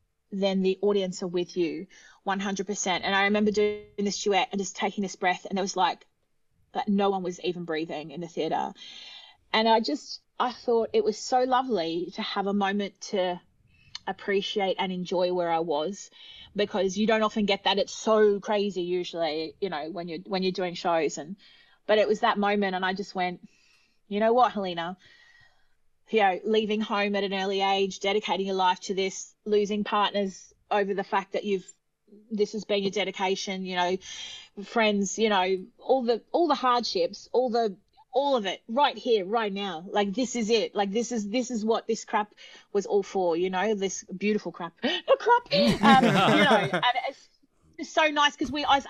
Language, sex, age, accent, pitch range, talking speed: English, female, 30-49, Australian, 190-230 Hz, 195 wpm